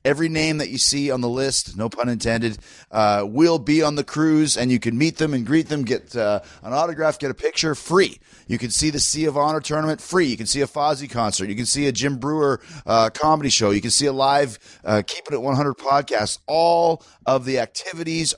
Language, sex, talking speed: English, male, 230 wpm